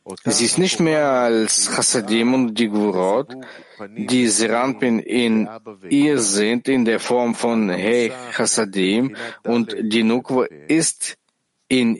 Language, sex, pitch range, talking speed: German, male, 105-135 Hz, 125 wpm